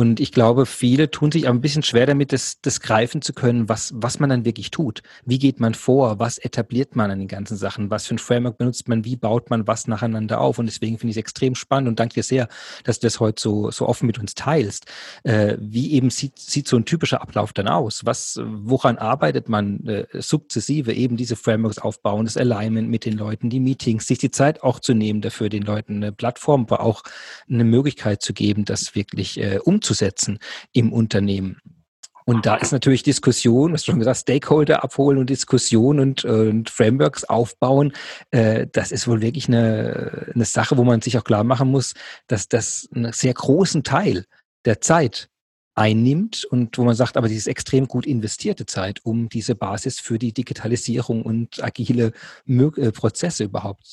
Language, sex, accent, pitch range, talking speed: German, male, German, 110-130 Hz, 200 wpm